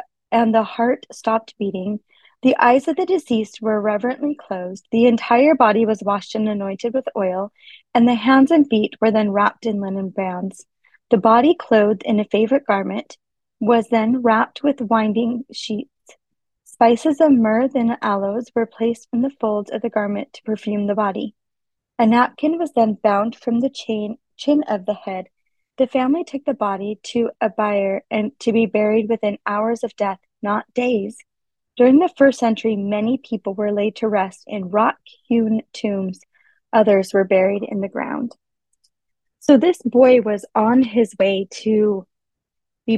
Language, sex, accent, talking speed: English, female, American, 170 wpm